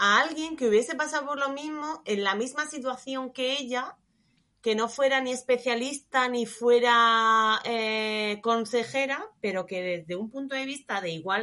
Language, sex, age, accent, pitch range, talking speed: Spanish, female, 30-49, Spanish, 185-255 Hz, 170 wpm